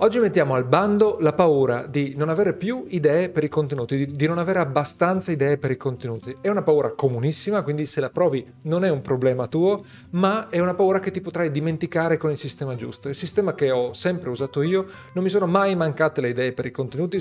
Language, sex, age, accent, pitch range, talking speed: Italian, male, 40-59, native, 130-170 Hz, 225 wpm